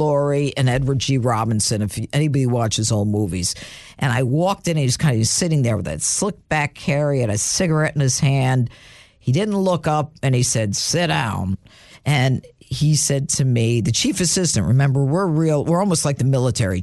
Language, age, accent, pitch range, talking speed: English, 50-69, American, 110-160 Hz, 205 wpm